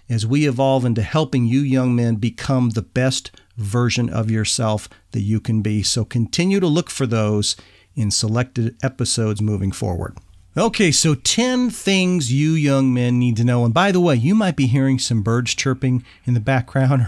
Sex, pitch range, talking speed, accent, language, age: male, 115-140 Hz, 185 wpm, American, English, 40-59